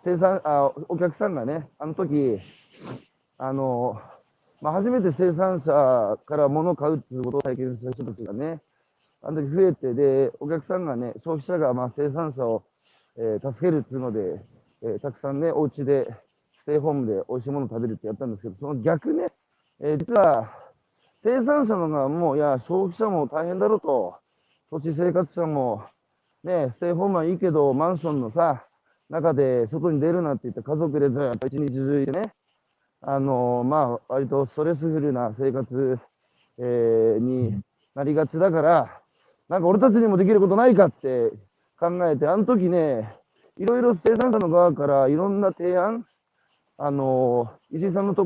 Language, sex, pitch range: Japanese, male, 135-180 Hz